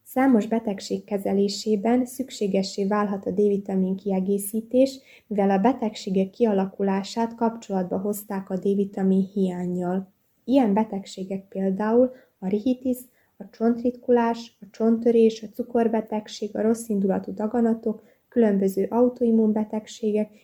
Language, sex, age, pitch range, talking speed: Hungarian, female, 20-39, 195-235 Hz, 100 wpm